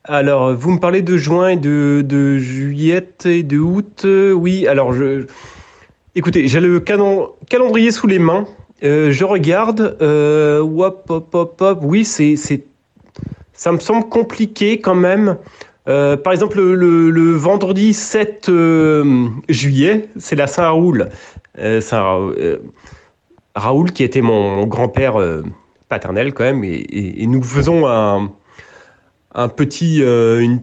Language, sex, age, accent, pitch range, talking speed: French, male, 30-49, French, 140-195 Hz, 150 wpm